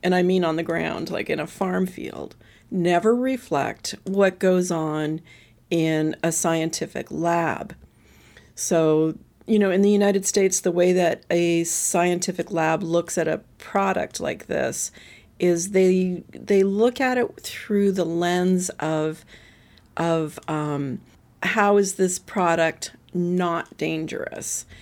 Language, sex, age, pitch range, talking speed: English, female, 40-59, 165-200 Hz, 140 wpm